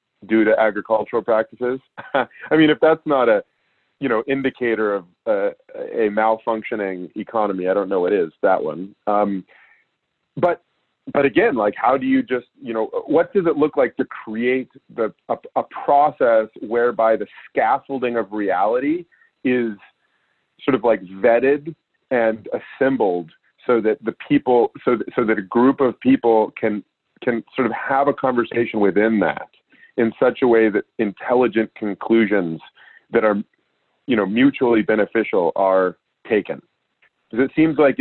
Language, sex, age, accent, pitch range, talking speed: English, male, 30-49, American, 105-135 Hz, 155 wpm